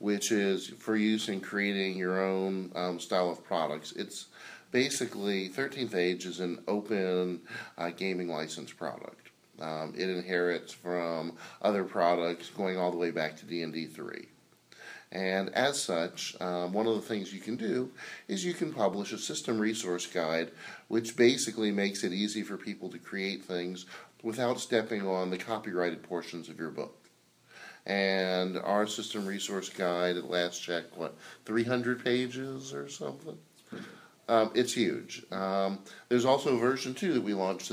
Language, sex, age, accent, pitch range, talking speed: English, male, 40-59, American, 90-110 Hz, 160 wpm